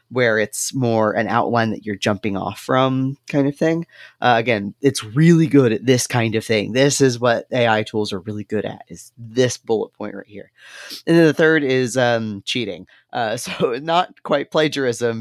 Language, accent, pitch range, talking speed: English, American, 110-125 Hz, 195 wpm